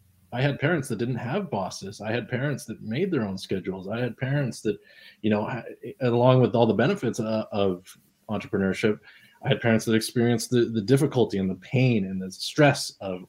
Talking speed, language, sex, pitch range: 205 wpm, English, male, 100-120 Hz